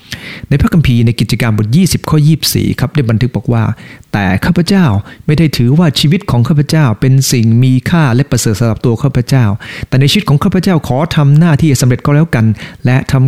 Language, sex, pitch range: English, male, 110-150 Hz